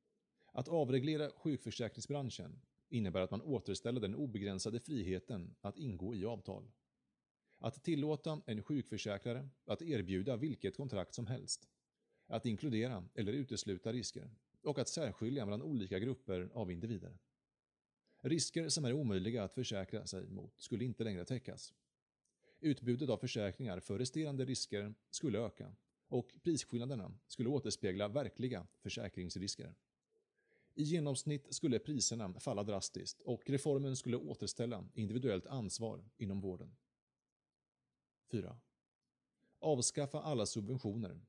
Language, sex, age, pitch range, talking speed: Swedish, male, 30-49, 100-140 Hz, 120 wpm